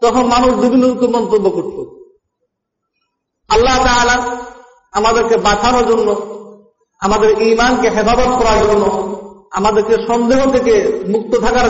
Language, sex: Bengali, male